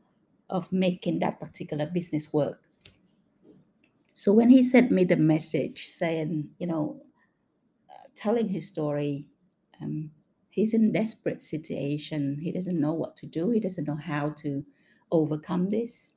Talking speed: 140 wpm